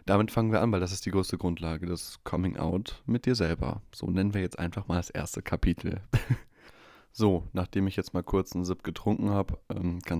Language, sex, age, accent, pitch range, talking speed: German, male, 20-39, German, 90-105 Hz, 210 wpm